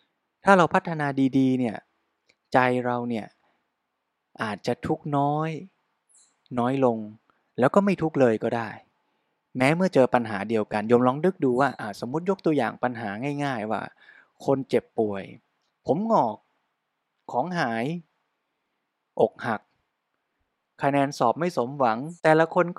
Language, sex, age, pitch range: Thai, male, 20-39, 125-155 Hz